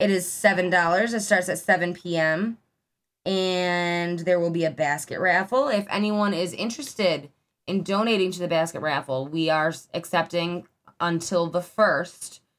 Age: 20-39